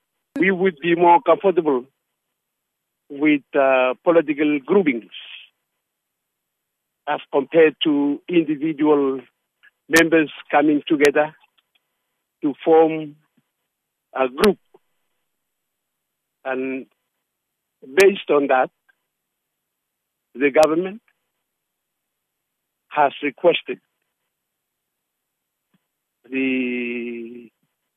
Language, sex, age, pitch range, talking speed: English, male, 60-79, 135-175 Hz, 60 wpm